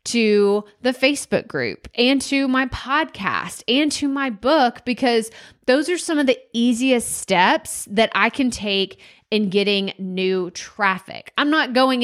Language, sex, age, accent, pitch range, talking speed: English, female, 20-39, American, 205-265 Hz, 155 wpm